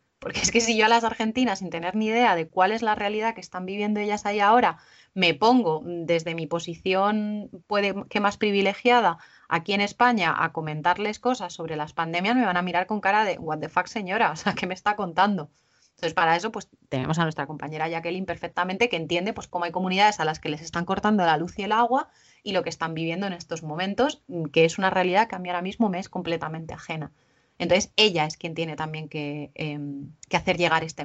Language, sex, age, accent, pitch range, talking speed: Spanish, female, 20-39, Spanish, 165-205 Hz, 230 wpm